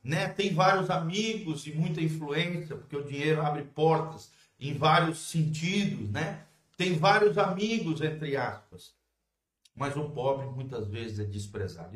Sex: male